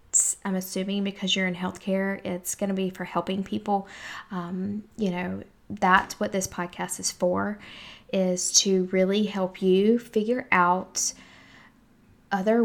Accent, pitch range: American, 185-210 Hz